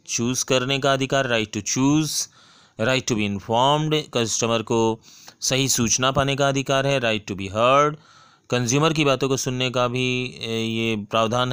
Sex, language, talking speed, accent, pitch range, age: male, Hindi, 165 wpm, native, 115-135 Hz, 30-49